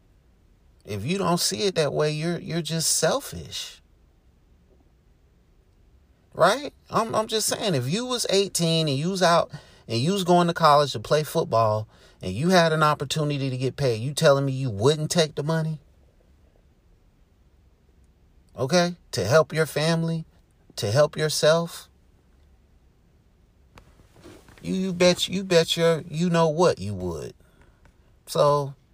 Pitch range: 105-170 Hz